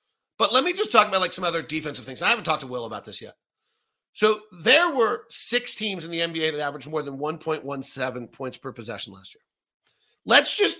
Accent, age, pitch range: American, 40-59, 165-245 Hz